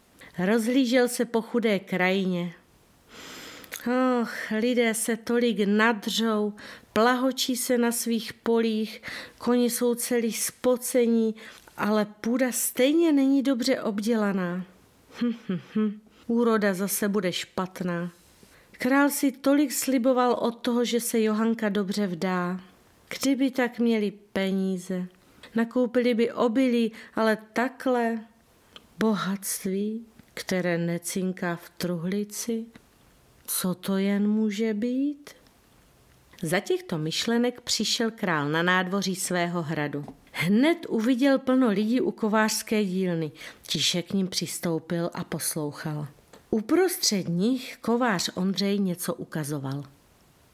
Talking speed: 105 wpm